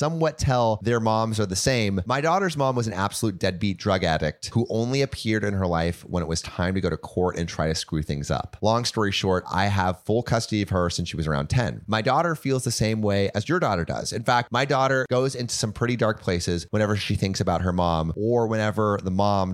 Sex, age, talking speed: male, 30-49, 245 wpm